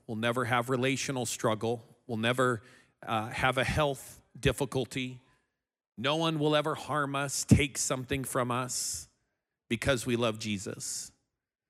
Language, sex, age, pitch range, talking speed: English, male, 40-59, 115-140 Hz, 135 wpm